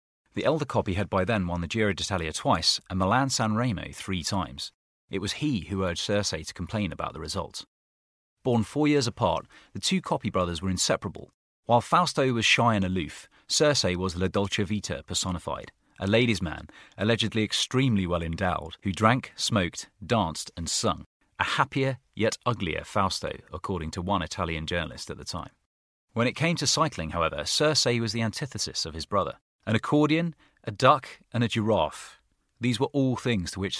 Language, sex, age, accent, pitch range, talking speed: English, male, 30-49, British, 90-120 Hz, 180 wpm